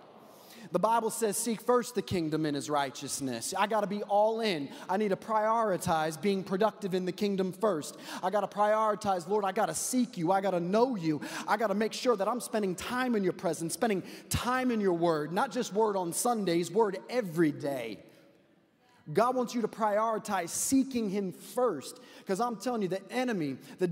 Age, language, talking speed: 30-49, English, 205 wpm